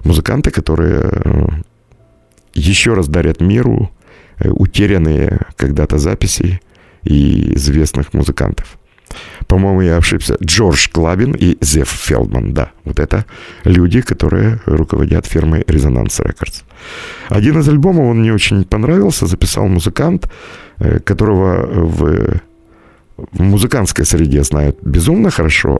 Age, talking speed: 50-69, 105 wpm